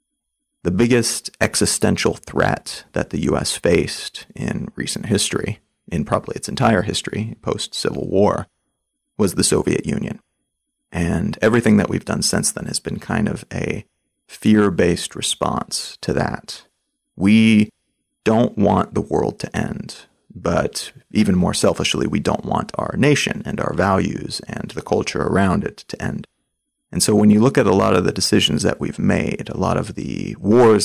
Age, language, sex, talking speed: 30-49, English, male, 160 wpm